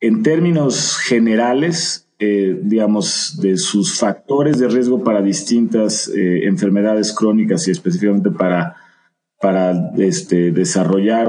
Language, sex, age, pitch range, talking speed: English, male, 40-59, 95-120 Hz, 110 wpm